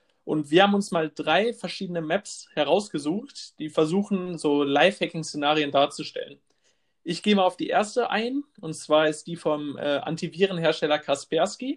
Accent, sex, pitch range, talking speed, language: German, male, 150-185 Hz, 160 wpm, German